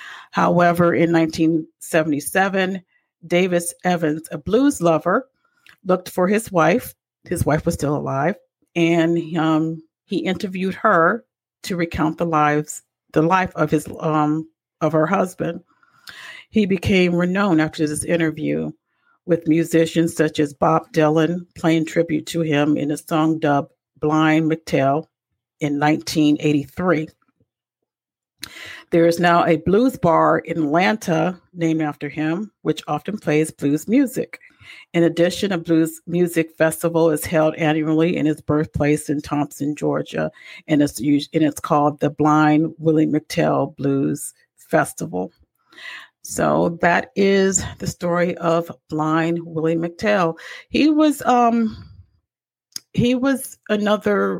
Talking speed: 130 wpm